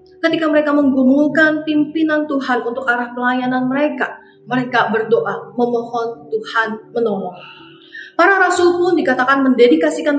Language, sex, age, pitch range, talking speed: Indonesian, female, 30-49, 235-300 Hz, 110 wpm